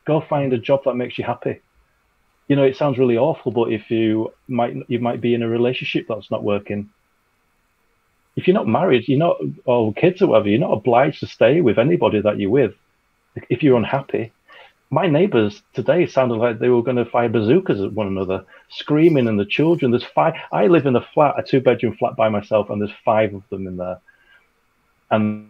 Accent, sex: British, male